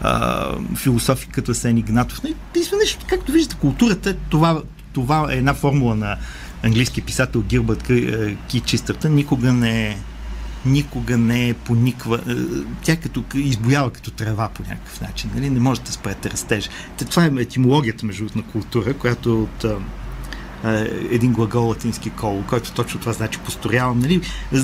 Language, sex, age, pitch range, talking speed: Bulgarian, male, 50-69, 110-155 Hz, 140 wpm